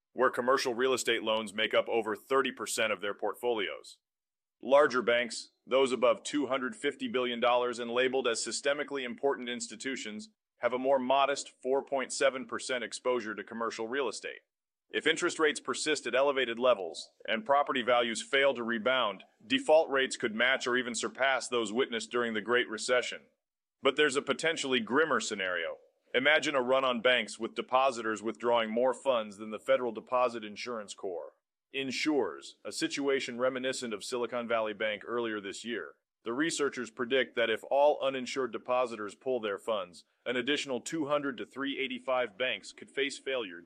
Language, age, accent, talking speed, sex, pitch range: English, 30-49, American, 155 wpm, male, 115-140 Hz